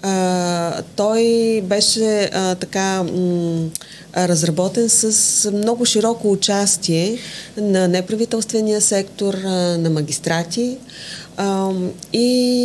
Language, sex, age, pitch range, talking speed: Bulgarian, female, 30-49, 170-215 Hz, 90 wpm